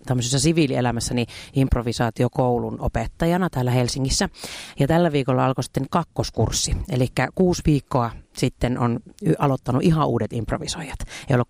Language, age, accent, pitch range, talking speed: Finnish, 40-59, native, 125-170 Hz, 115 wpm